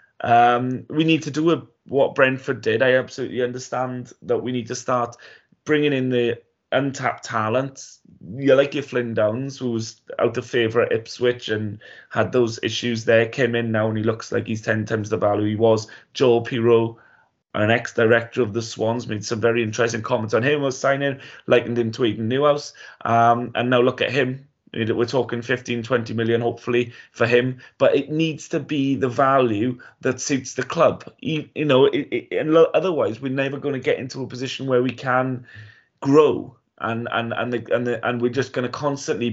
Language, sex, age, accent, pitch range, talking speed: English, male, 20-39, British, 115-135 Hz, 200 wpm